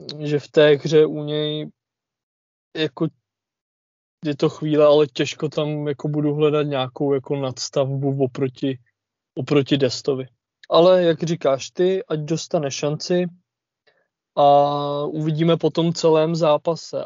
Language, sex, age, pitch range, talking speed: Czech, male, 20-39, 145-165 Hz, 120 wpm